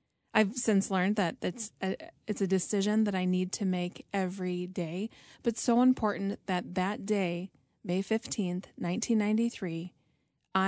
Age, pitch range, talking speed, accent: 30-49, 185-225 Hz, 135 wpm, American